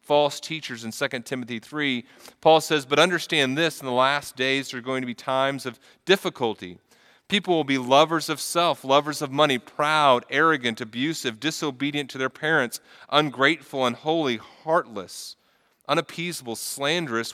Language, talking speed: English, 150 wpm